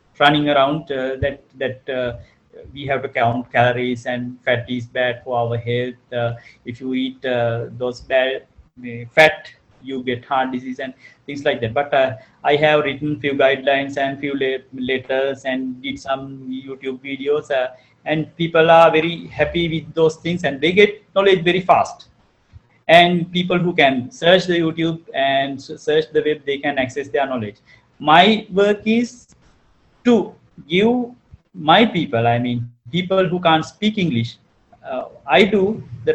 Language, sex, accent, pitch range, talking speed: English, male, Indian, 130-175 Hz, 165 wpm